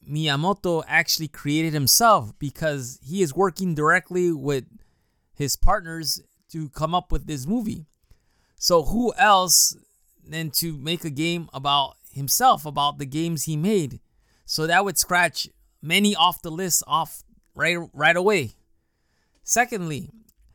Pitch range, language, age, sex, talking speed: 140-180 Hz, English, 20-39, male, 135 wpm